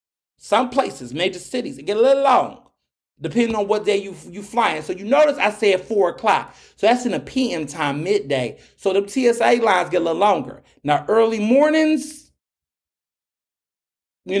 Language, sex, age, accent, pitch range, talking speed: English, male, 30-49, American, 155-230 Hz, 180 wpm